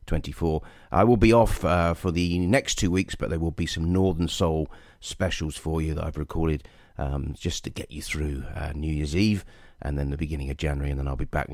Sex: male